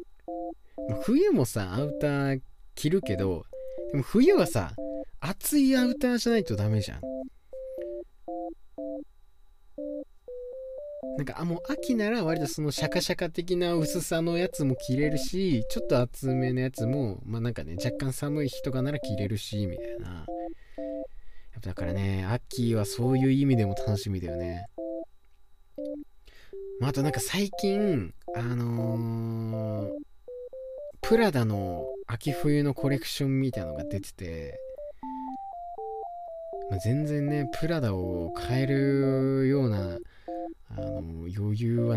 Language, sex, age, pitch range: Japanese, male, 20-39, 110-175 Hz